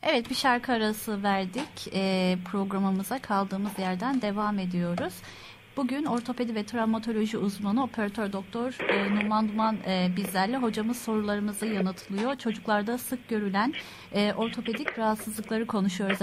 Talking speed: 120 wpm